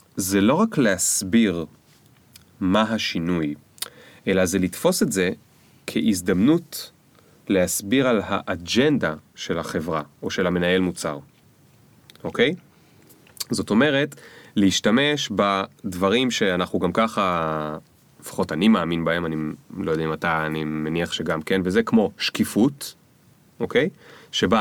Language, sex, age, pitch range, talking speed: Hebrew, male, 30-49, 90-145 Hz, 115 wpm